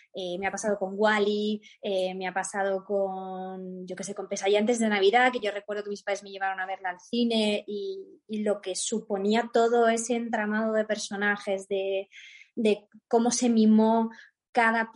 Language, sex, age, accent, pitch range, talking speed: Spanish, female, 20-39, Spanish, 195-230 Hz, 185 wpm